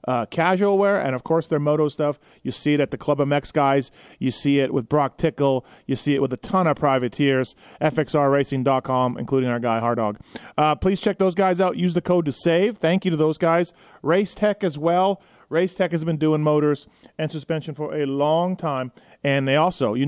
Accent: American